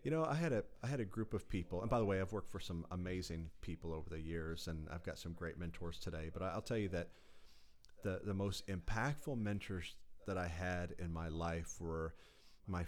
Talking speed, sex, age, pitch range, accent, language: 230 wpm, male, 40-59, 85-105 Hz, American, English